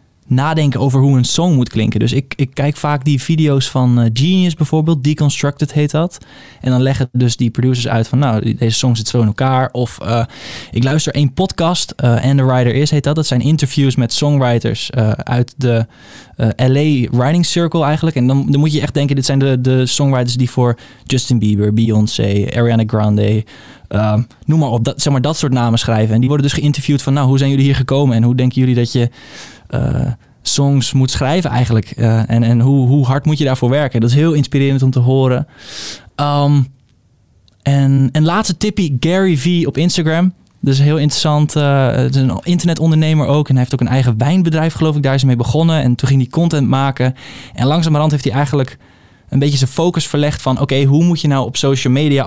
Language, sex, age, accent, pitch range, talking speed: Dutch, male, 20-39, Dutch, 125-145 Hz, 220 wpm